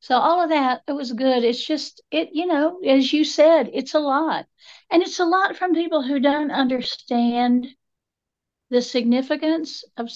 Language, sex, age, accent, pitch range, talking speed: English, female, 60-79, American, 225-300 Hz, 175 wpm